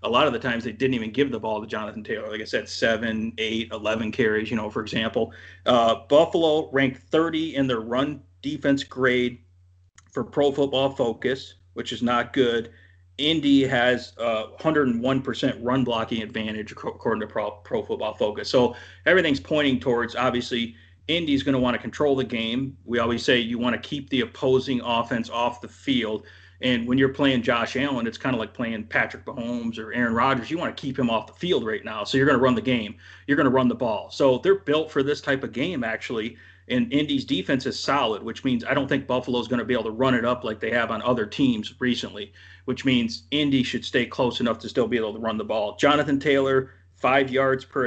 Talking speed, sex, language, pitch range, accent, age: 220 wpm, male, English, 110-135 Hz, American, 40-59